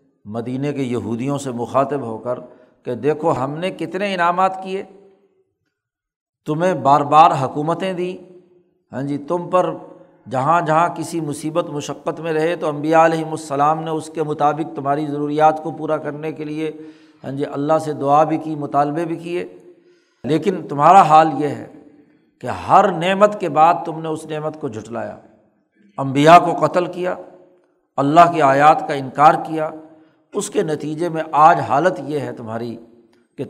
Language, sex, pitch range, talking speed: Urdu, male, 140-175 Hz, 165 wpm